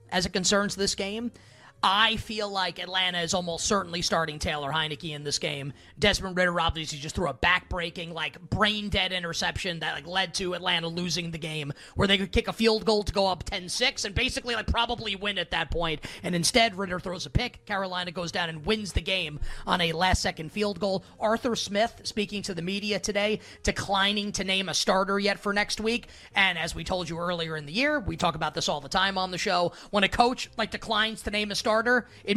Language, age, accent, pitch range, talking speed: English, 30-49, American, 165-210 Hz, 220 wpm